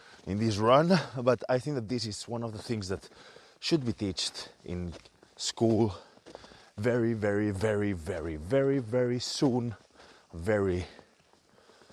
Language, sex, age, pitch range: English, male, 30-49, 110-160 Hz